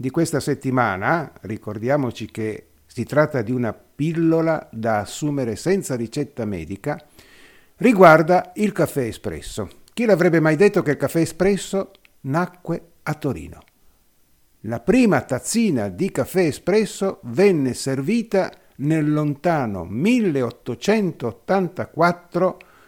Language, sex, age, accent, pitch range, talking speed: Italian, male, 50-69, native, 125-180 Hz, 110 wpm